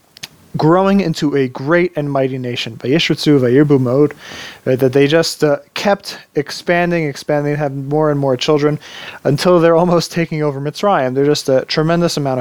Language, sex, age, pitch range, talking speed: English, male, 30-49, 130-165 Hz, 160 wpm